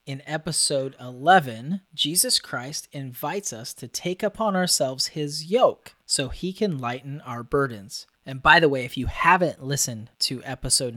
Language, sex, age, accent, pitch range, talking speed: English, male, 30-49, American, 125-155 Hz, 160 wpm